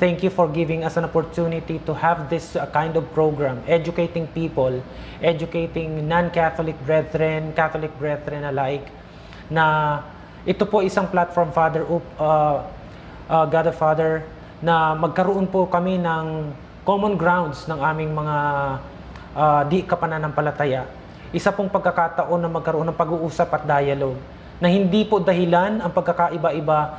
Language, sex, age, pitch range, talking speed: Filipino, male, 20-39, 150-175 Hz, 130 wpm